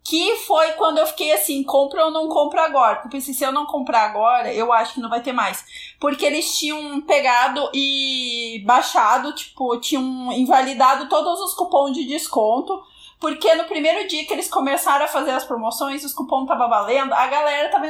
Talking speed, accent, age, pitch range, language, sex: 190 wpm, Brazilian, 30-49, 270-345 Hz, Portuguese, female